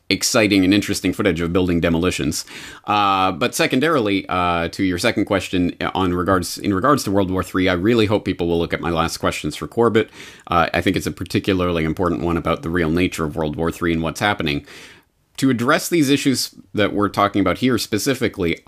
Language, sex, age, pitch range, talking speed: English, male, 30-49, 95-130 Hz, 205 wpm